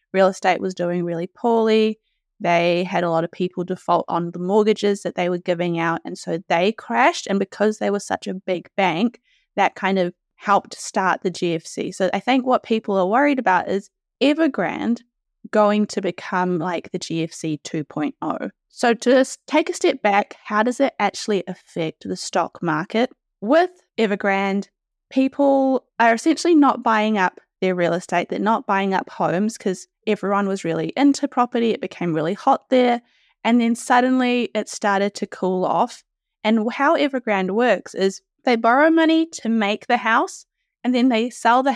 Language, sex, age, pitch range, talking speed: English, female, 20-39, 185-250 Hz, 175 wpm